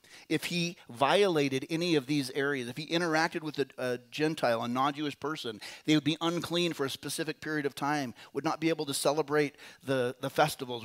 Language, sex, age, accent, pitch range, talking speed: English, male, 40-59, American, 130-160 Hz, 200 wpm